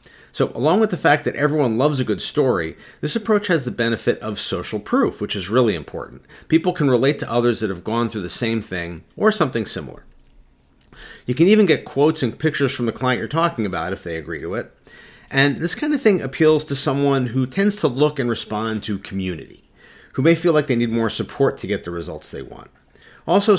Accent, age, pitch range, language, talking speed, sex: American, 40-59, 115-165 Hz, English, 220 wpm, male